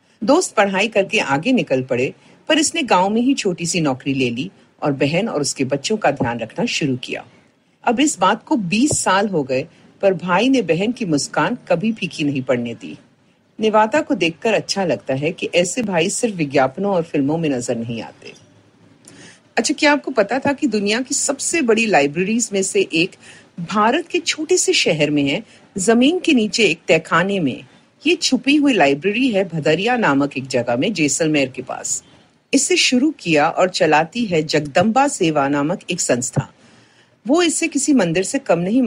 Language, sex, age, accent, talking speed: Hindi, female, 50-69, native, 125 wpm